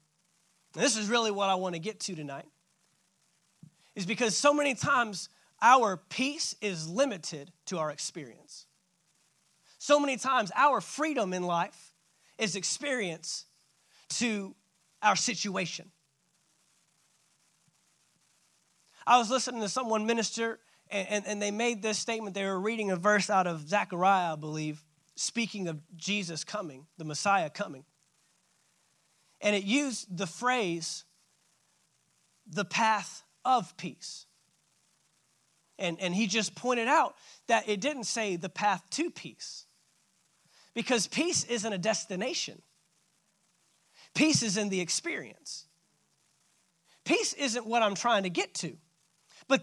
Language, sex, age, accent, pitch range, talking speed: English, male, 30-49, American, 170-225 Hz, 130 wpm